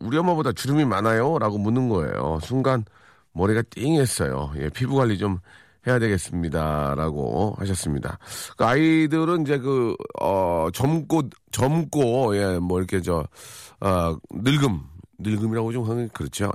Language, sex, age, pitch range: Korean, male, 40-59, 95-140 Hz